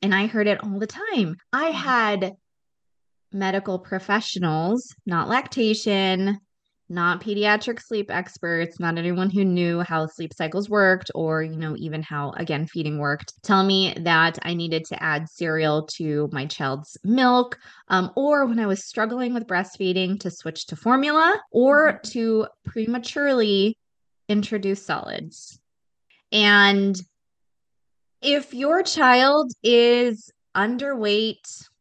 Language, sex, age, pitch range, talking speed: English, female, 20-39, 175-230 Hz, 130 wpm